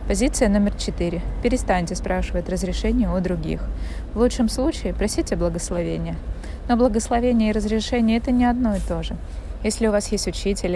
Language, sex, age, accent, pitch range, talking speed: Russian, female, 20-39, native, 170-220 Hz, 155 wpm